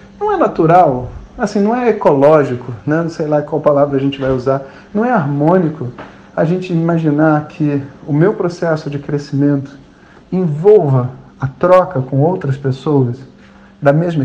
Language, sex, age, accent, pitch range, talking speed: Portuguese, male, 40-59, Brazilian, 135-180 Hz, 150 wpm